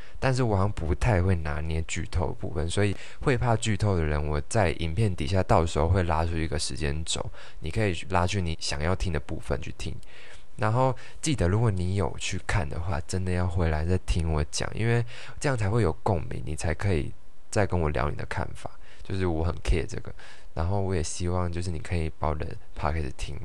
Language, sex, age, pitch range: Chinese, male, 20-39, 80-100 Hz